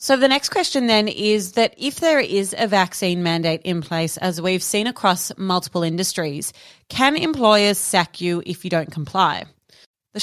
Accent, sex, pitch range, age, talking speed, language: Australian, female, 175-220 Hz, 30-49, 175 wpm, English